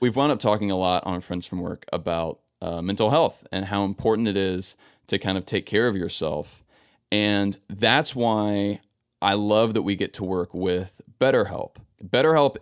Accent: American